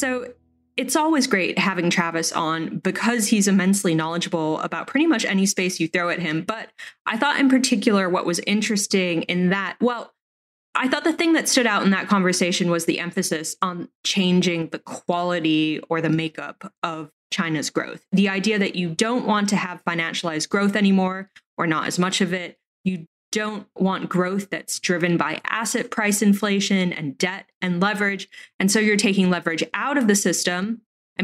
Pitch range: 175-220 Hz